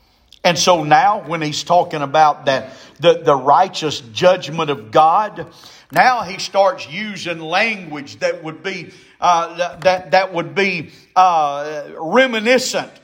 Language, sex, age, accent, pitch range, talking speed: English, male, 50-69, American, 175-265 Hz, 135 wpm